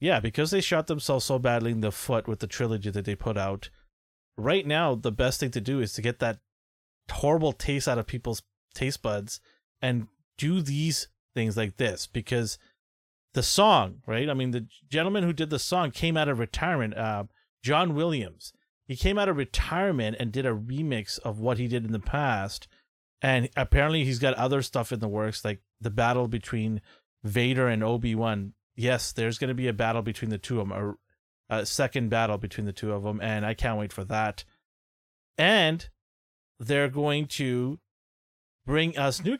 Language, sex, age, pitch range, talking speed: English, male, 30-49, 105-130 Hz, 190 wpm